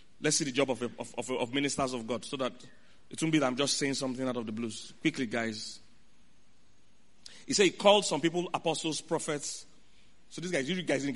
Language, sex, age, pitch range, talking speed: English, male, 30-49, 135-190 Hz, 215 wpm